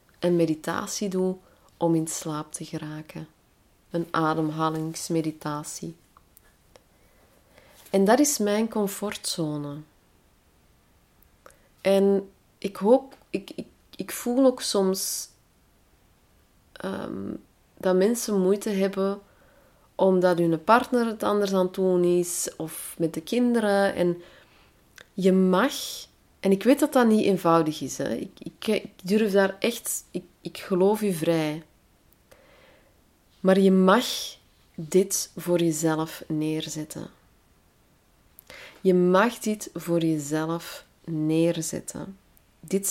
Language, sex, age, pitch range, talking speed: Dutch, female, 30-49, 160-200 Hz, 110 wpm